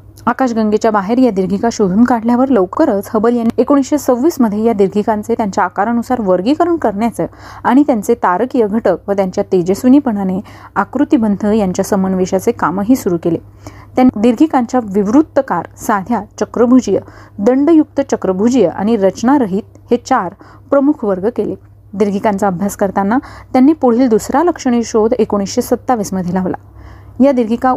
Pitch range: 195-250 Hz